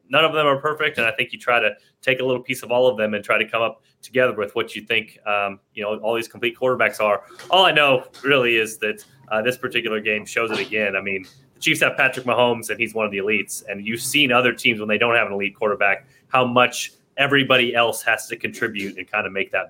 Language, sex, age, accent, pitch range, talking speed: English, male, 30-49, American, 110-150 Hz, 265 wpm